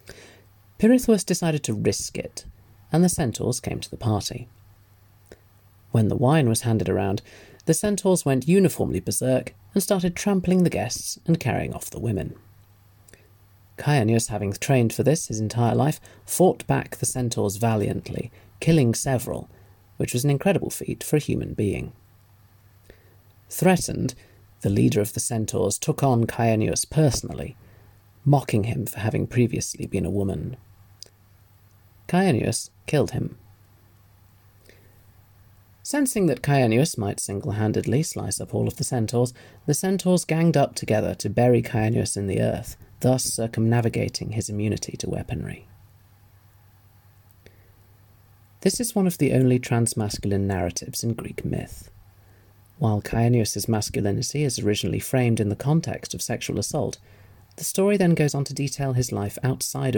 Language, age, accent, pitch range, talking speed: English, 40-59, British, 100-135 Hz, 140 wpm